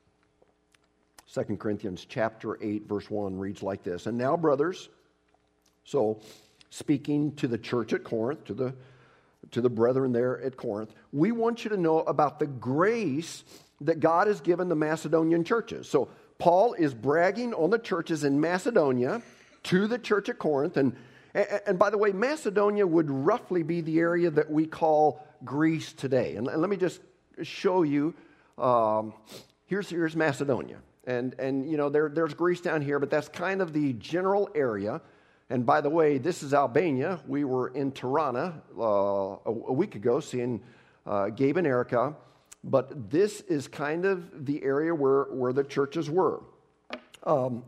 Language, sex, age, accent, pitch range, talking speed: English, male, 50-69, American, 125-180 Hz, 170 wpm